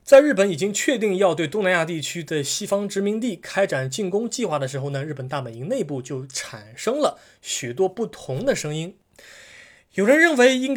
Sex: male